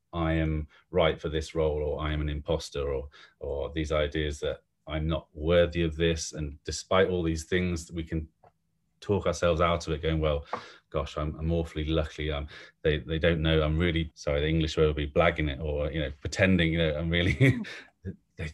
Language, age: English, 30-49